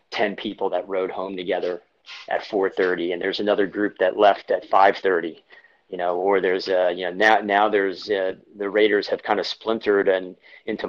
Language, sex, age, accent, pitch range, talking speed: English, male, 30-49, American, 95-105 Hz, 195 wpm